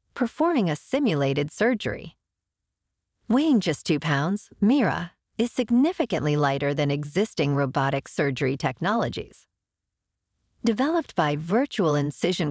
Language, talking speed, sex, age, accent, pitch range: English, 100 wpm, female, 50-69, American, 140-225 Hz